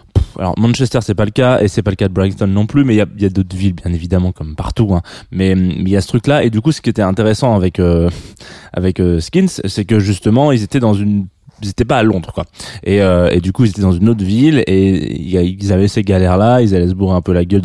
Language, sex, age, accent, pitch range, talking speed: French, male, 20-39, French, 95-130 Hz, 300 wpm